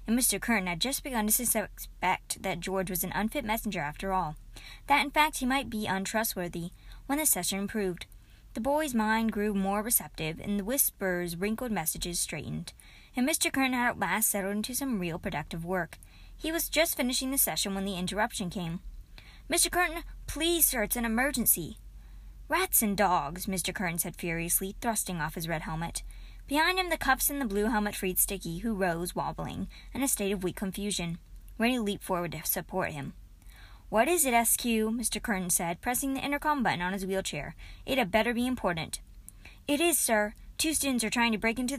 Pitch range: 185-250 Hz